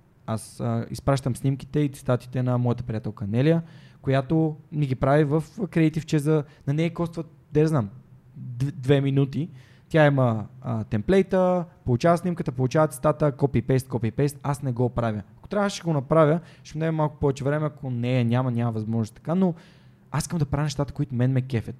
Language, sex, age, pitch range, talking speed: Bulgarian, male, 20-39, 125-160 Hz, 170 wpm